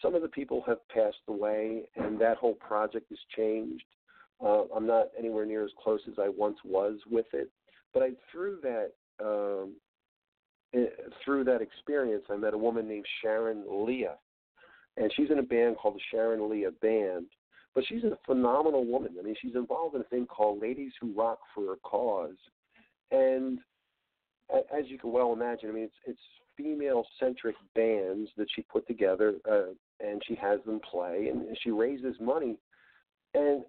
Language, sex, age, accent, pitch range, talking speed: English, male, 50-69, American, 110-145 Hz, 175 wpm